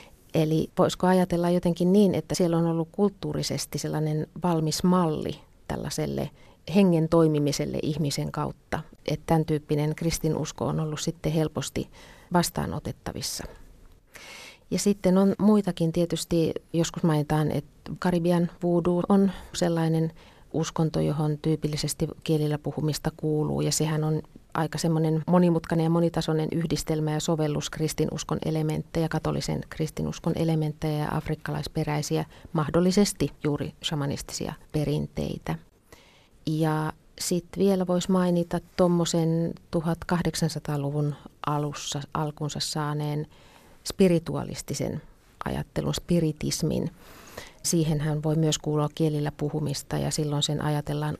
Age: 30-49